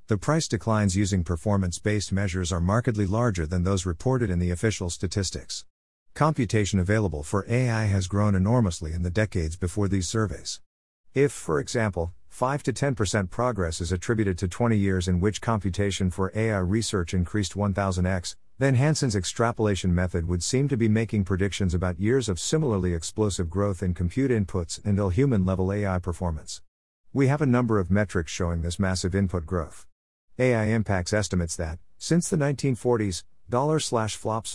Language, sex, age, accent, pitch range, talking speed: English, male, 50-69, American, 90-115 Hz, 165 wpm